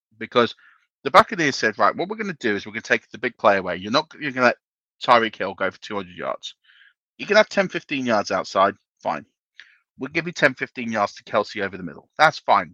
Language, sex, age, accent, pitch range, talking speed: English, male, 40-59, British, 110-155 Hz, 250 wpm